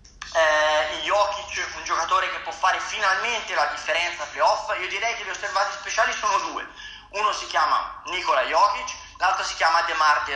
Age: 30-49